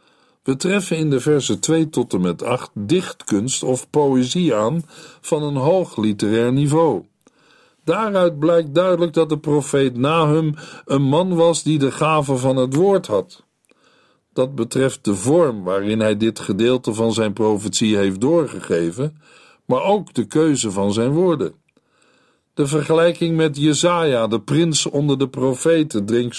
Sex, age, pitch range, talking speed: male, 50-69, 125-165 Hz, 150 wpm